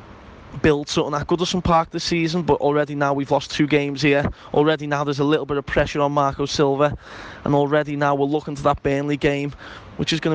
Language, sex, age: English, male, 20-39